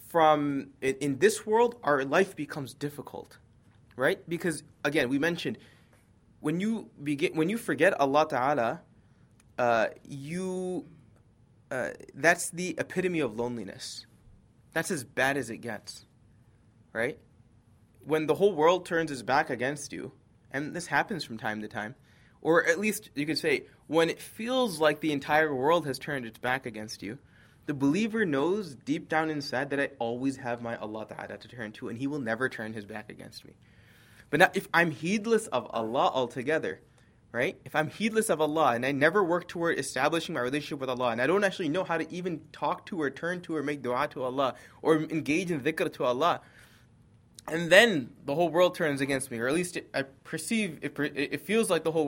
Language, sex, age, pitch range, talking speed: English, male, 20-39, 120-165 Hz, 185 wpm